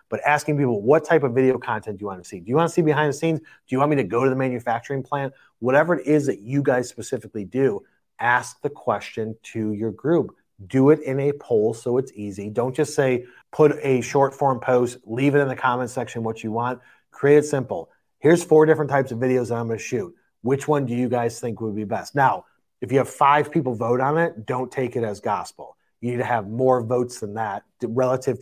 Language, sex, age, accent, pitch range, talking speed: English, male, 30-49, American, 115-140 Hz, 245 wpm